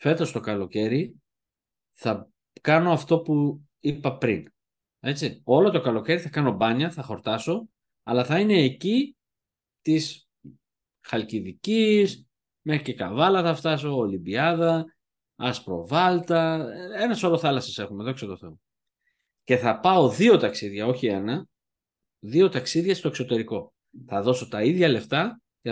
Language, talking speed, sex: Greek, 125 wpm, male